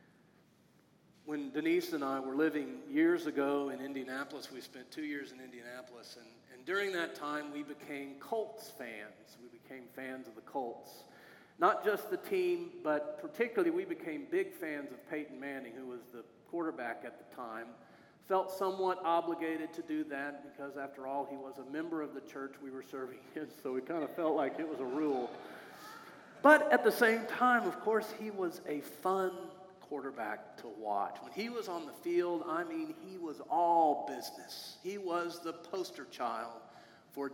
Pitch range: 140-190 Hz